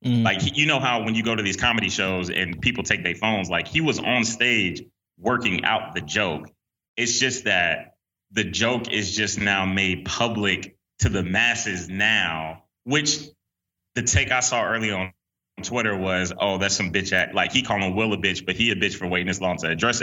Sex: male